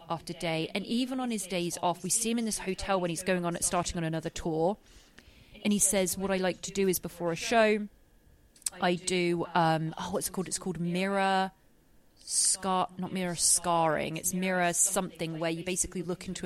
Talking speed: 205 wpm